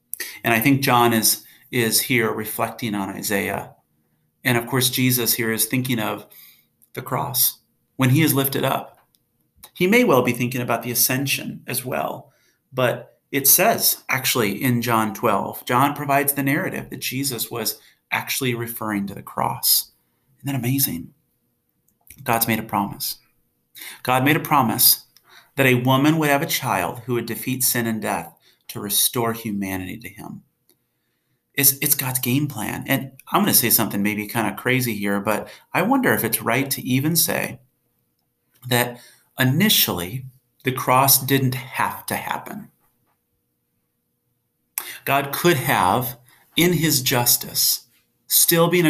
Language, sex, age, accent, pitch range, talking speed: English, male, 40-59, American, 110-135 Hz, 150 wpm